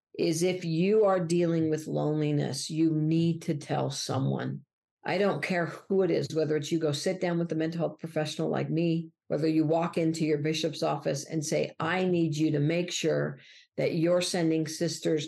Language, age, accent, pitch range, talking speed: English, 50-69, American, 150-175 Hz, 195 wpm